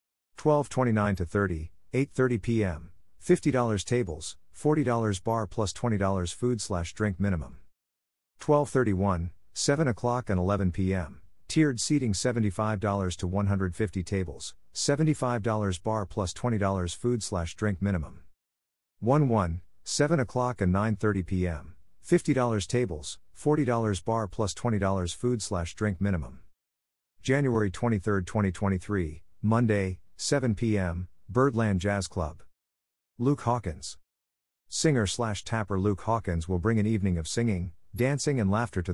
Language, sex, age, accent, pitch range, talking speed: English, male, 50-69, American, 90-115 Hz, 120 wpm